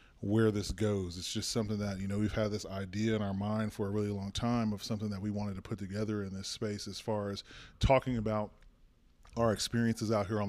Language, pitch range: English, 100-110 Hz